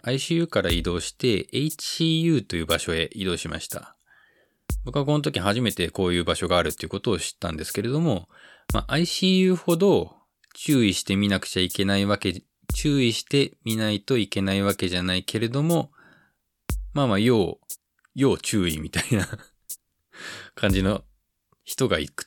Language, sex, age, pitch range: Japanese, male, 20-39, 90-125 Hz